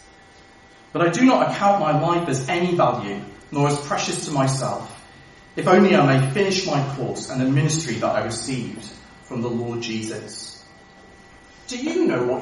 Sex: male